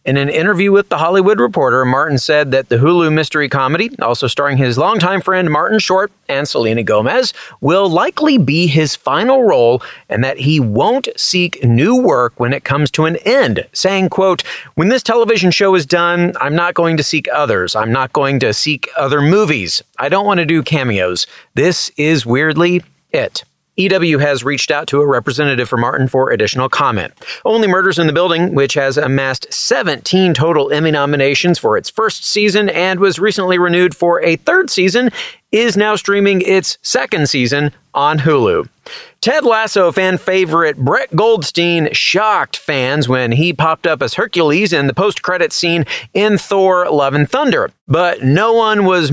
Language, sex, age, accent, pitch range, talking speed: English, male, 40-59, American, 145-195 Hz, 175 wpm